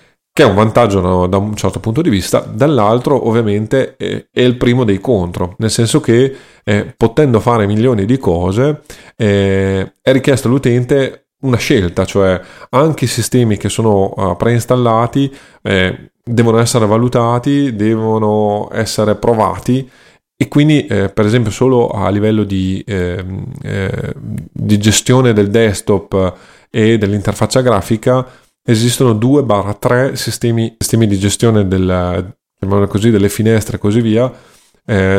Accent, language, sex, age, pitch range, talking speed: native, Italian, male, 30-49, 100-125 Hz, 135 wpm